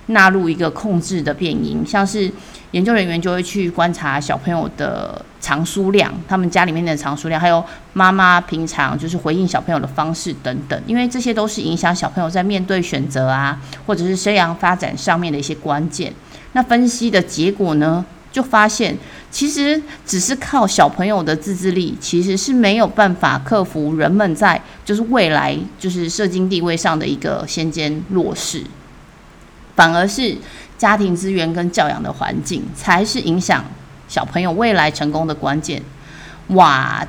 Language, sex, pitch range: Chinese, female, 160-200 Hz